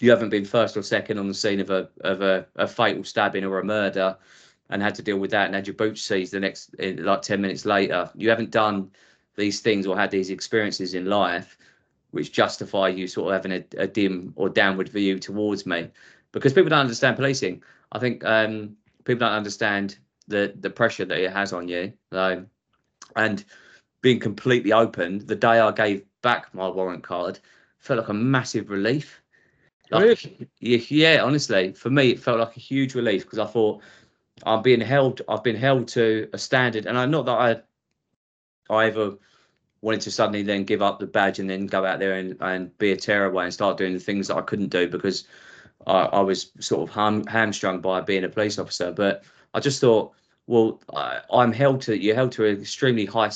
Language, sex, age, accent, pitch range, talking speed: English, male, 20-39, British, 95-115 Hz, 205 wpm